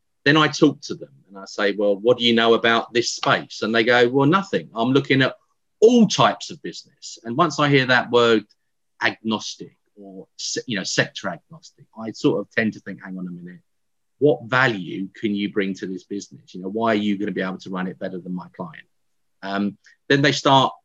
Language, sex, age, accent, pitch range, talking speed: English, male, 40-59, British, 100-140 Hz, 225 wpm